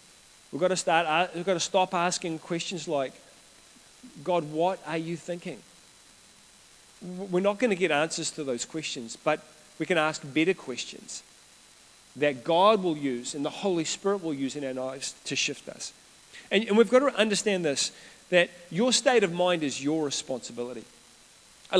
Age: 40-59